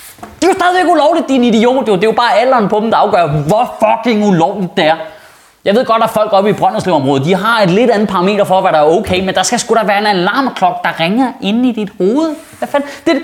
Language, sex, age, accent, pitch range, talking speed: Danish, male, 20-39, native, 185-255 Hz, 270 wpm